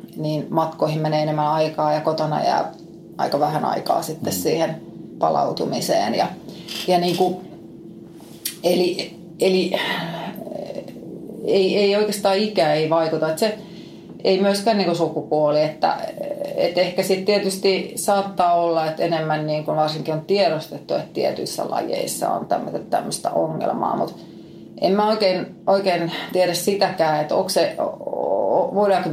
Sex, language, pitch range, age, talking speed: female, Finnish, 160-190 Hz, 30-49, 130 wpm